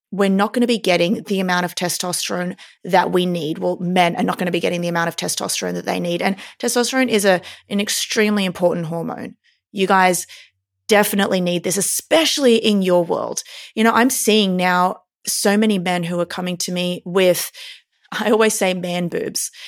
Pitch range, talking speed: 180-225 Hz, 200 wpm